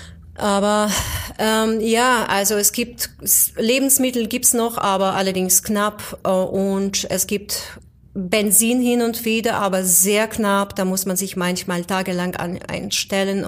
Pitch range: 180-210 Hz